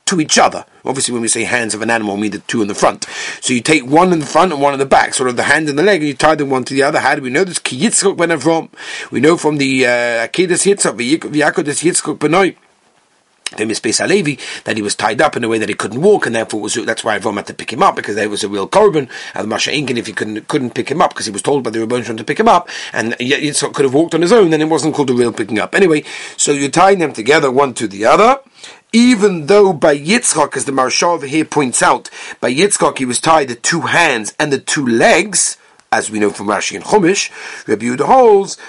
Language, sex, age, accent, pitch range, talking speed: English, male, 40-59, British, 125-175 Hz, 260 wpm